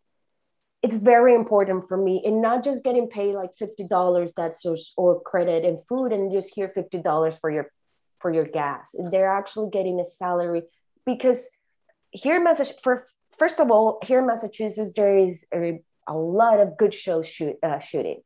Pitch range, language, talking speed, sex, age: 175-235 Hz, English, 175 wpm, female, 20-39